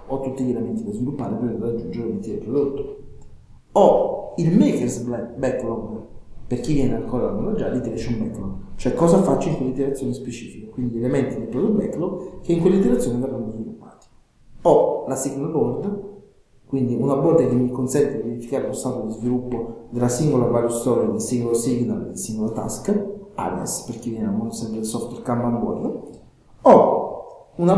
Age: 40-59